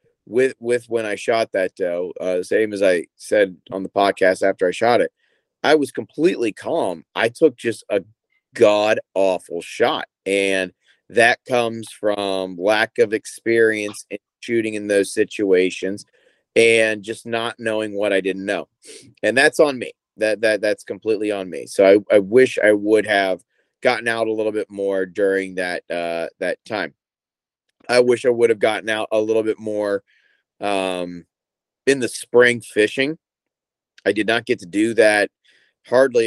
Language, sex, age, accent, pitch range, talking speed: English, male, 40-59, American, 95-130 Hz, 170 wpm